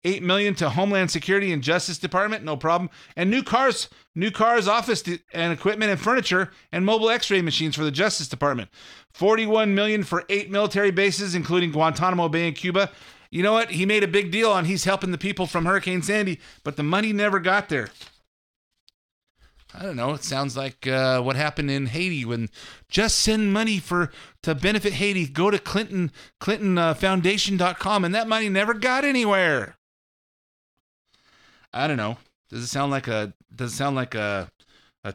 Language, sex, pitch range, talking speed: English, male, 140-195 Hz, 180 wpm